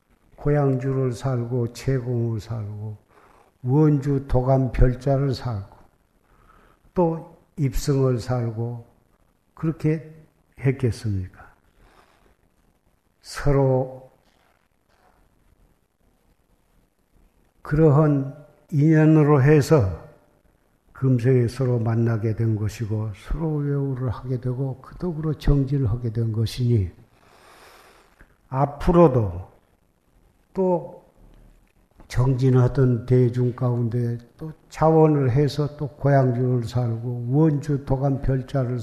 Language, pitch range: Korean, 115-145 Hz